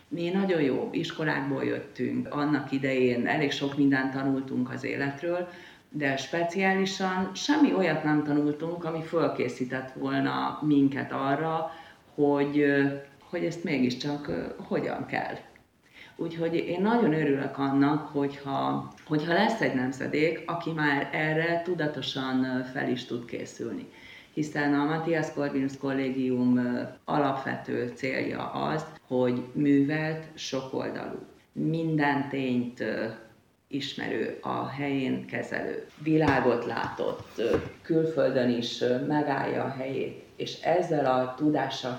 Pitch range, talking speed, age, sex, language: 130-155 Hz, 110 wpm, 40-59, female, Hungarian